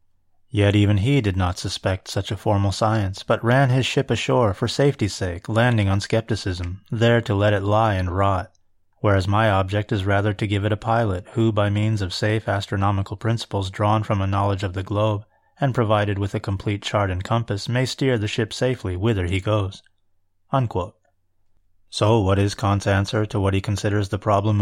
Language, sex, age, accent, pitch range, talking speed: English, male, 30-49, American, 95-110 Hz, 195 wpm